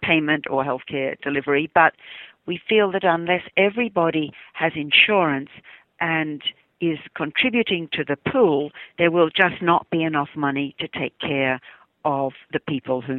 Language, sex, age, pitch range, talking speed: English, female, 60-79, 140-170 Hz, 145 wpm